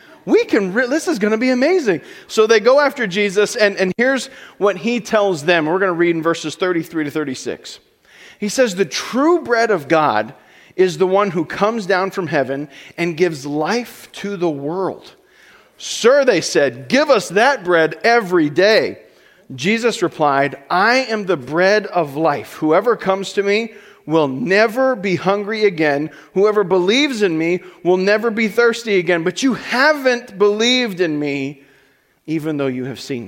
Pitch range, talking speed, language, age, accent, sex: 165-230 Hz, 175 wpm, English, 40-59, American, male